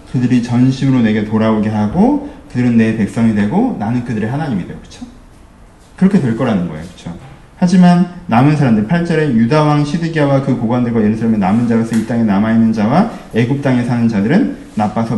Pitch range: 115-175 Hz